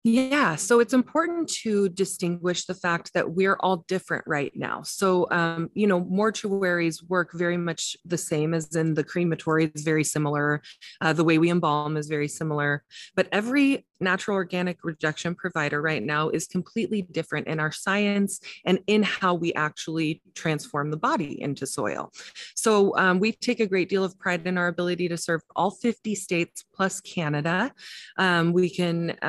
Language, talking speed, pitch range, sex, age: English, 175 wpm, 165-190 Hz, female, 20-39